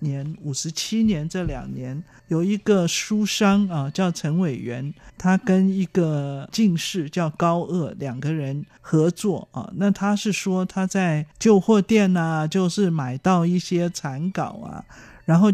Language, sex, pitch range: Chinese, male, 150-200 Hz